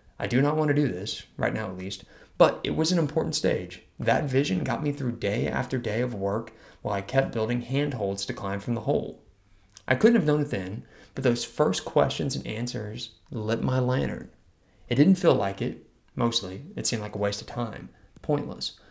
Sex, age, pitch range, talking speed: male, 30-49, 95-130 Hz, 210 wpm